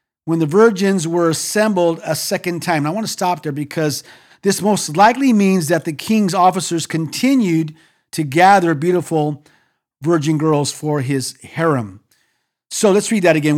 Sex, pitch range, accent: male, 155-205 Hz, American